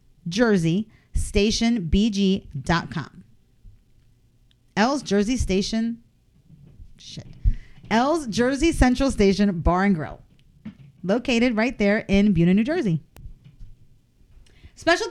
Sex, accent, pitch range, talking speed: female, American, 175-250 Hz, 85 wpm